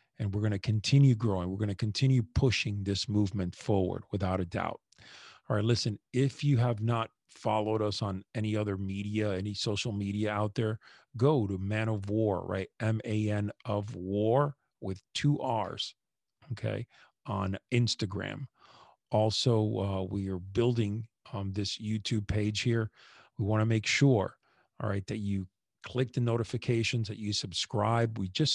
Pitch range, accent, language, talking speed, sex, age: 100-115 Hz, American, English, 165 wpm, male, 40-59